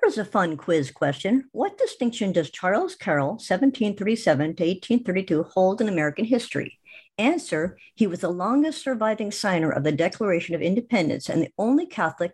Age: 50-69